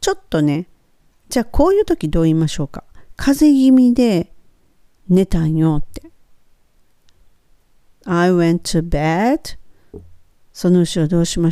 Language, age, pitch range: Japanese, 50-69, 150-185 Hz